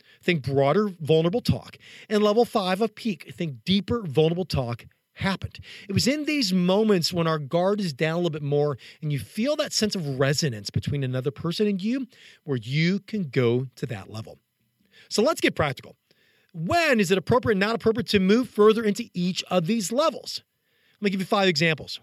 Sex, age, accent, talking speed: male, 40-59, American, 195 wpm